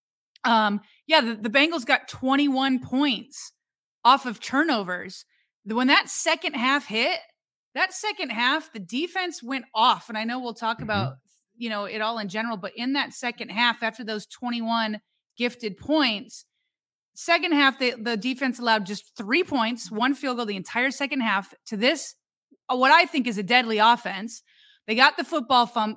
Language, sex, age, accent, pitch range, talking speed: English, female, 30-49, American, 215-265 Hz, 175 wpm